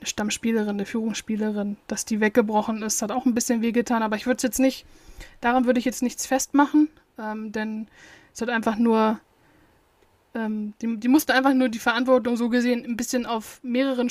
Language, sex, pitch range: German, female, 220-245 Hz